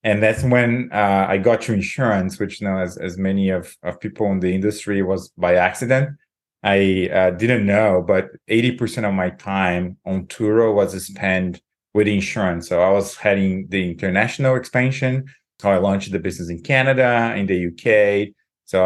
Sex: male